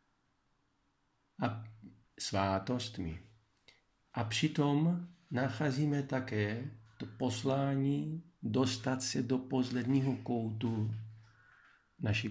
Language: Czech